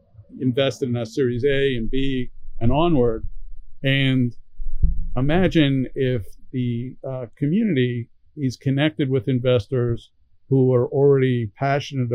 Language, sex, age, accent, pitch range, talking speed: English, male, 50-69, American, 115-135 Hz, 115 wpm